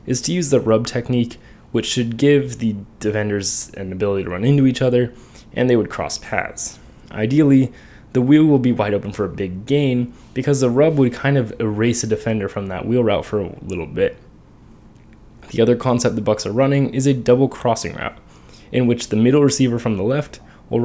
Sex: male